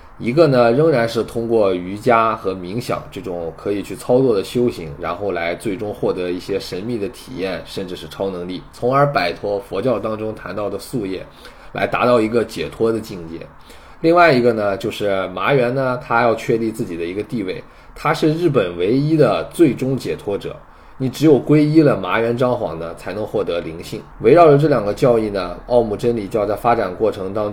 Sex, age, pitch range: male, 20-39, 95-125 Hz